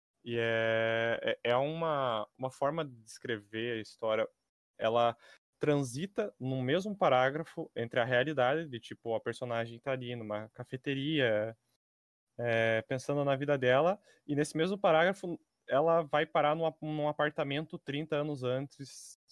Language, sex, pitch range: Portuguese, male, 115-150 Hz